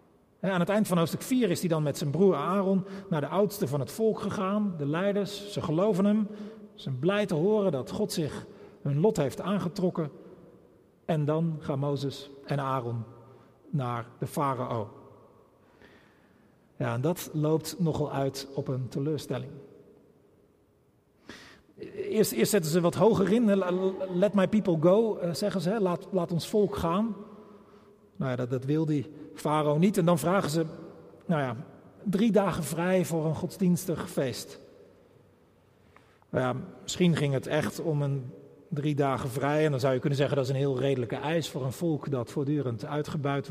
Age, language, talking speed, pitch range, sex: 40-59, Dutch, 165 wpm, 140-185 Hz, male